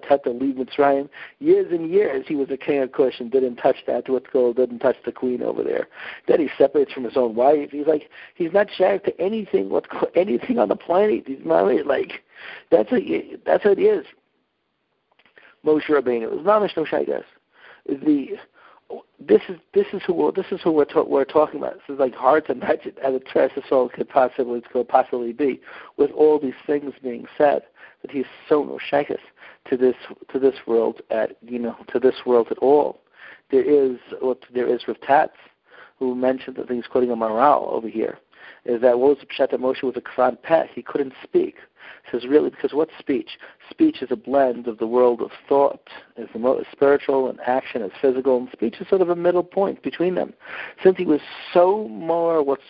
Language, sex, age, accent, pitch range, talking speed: English, male, 60-79, American, 130-180 Hz, 200 wpm